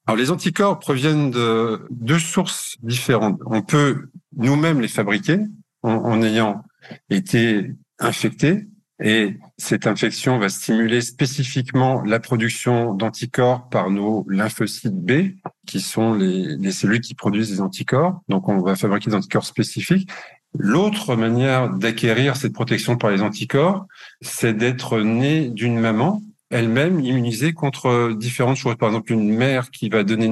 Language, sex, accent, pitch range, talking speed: French, male, French, 110-150 Hz, 145 wpm